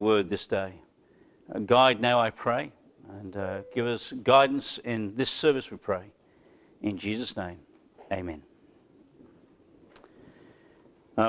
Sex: male